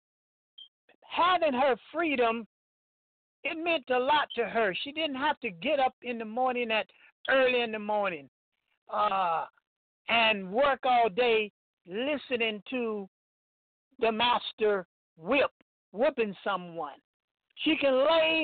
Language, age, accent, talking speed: English, 50-69, American, 125 wpm